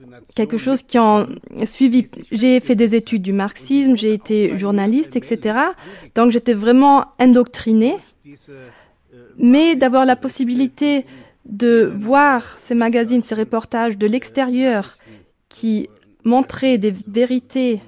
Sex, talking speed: female, 115 wpm